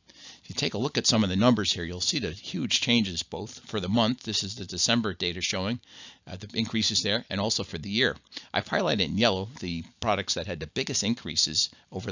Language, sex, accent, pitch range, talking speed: English, male, American, 90-120 Hz, 225 wpm